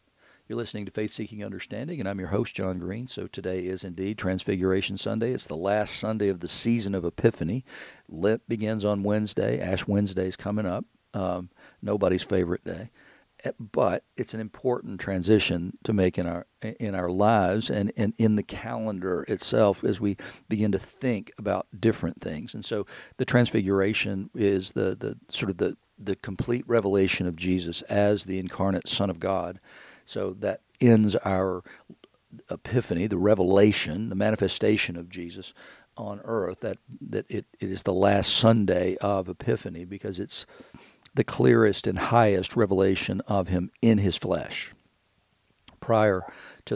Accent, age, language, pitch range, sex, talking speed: American, 50-69, English, 95-110 Hz, male, 160 wpm